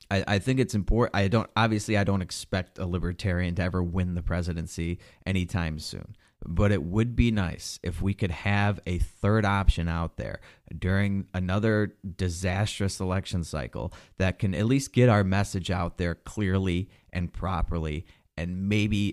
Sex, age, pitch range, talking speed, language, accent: male, 30-49, 85-100 Hz, 165 wpm, English, American